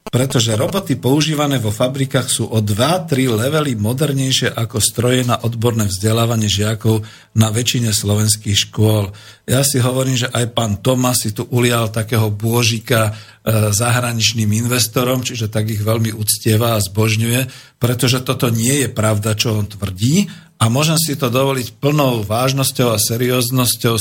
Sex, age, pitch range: male, 50-69, 110-135 Hz